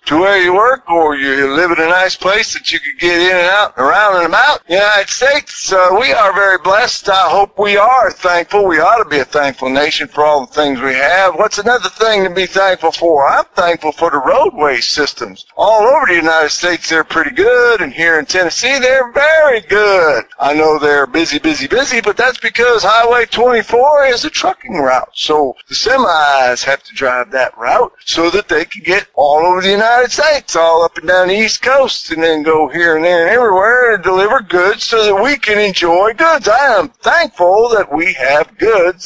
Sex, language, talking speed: male, English, 215 wpm